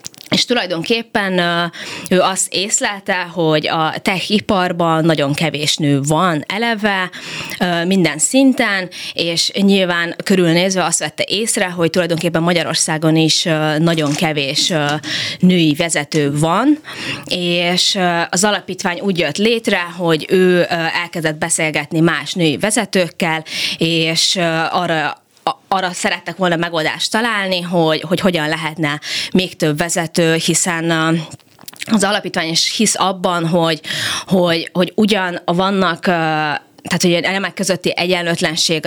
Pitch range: 160-185 Hz